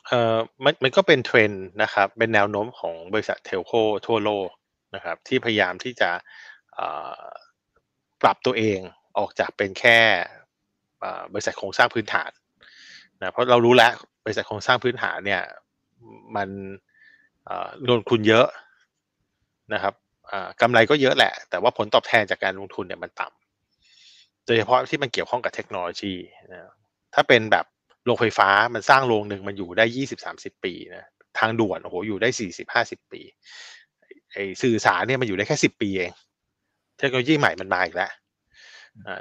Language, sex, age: Thai, male, 20-39